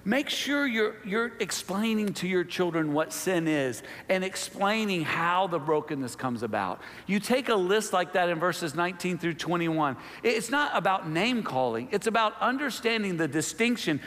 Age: 50-69